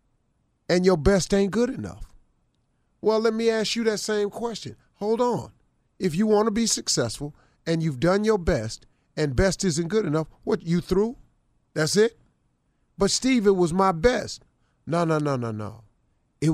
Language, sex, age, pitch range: English, male, 40-59, 130-185 Hz